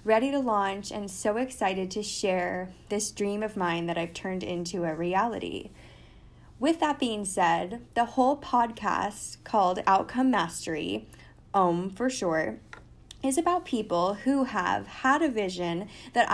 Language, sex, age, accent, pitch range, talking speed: English, female, 10-29, American, 185-230 Hz, 145 wpm